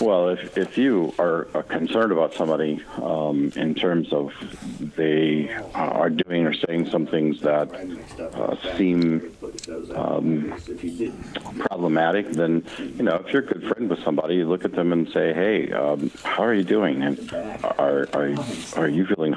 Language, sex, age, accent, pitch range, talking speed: English, male, 60-79, American, 75-90 Hz, 160 wpm